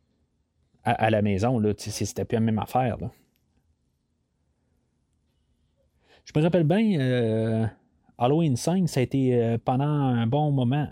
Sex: male